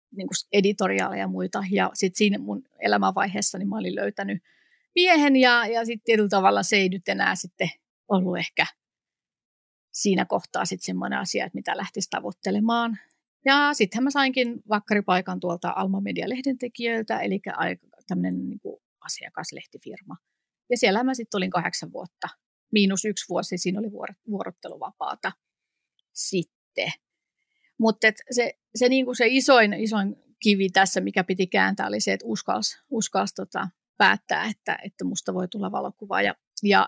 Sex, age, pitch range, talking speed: female, 30-49, 185-235 Hz, 140 wpm